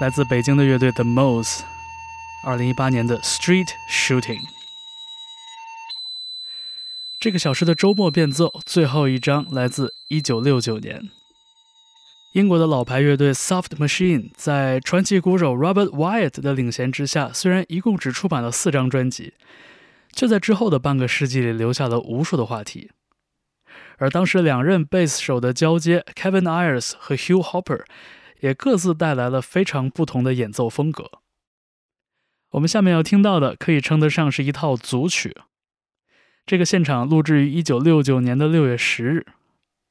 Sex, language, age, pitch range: male, Chinese, 20-39, 130-185 Hz